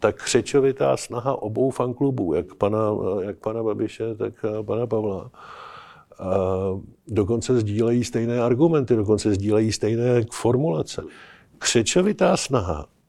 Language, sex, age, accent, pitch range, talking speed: Czech, male, 50-69, native, 110-130 Hz, 110 wpm